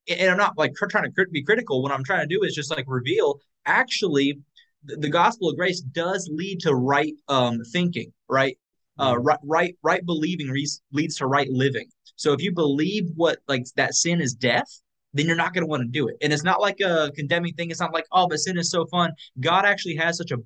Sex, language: male, English